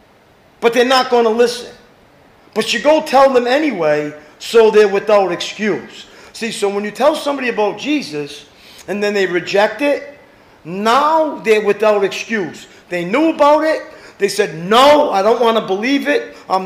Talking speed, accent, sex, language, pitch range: 170 wpm, American, male, English, 200-290 Hz